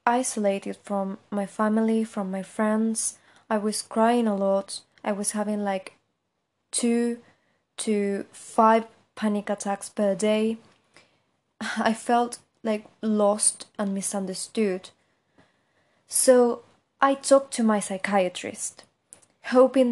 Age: 20-39